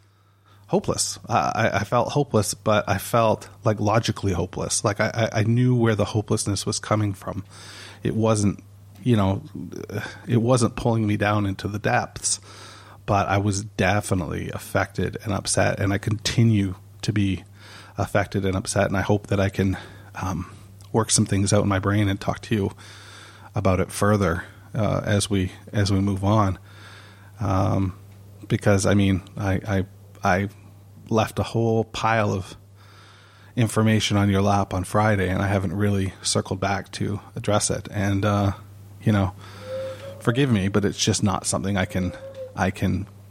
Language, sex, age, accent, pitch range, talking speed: English, male, 30-49, American, 100-110 Hz, 165 wpm